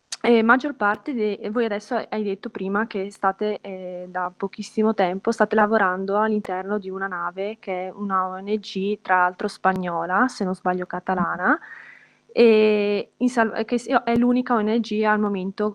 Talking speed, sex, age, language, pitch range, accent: 150 wpm, female, 20-39, Italian, 190-215 Hz, native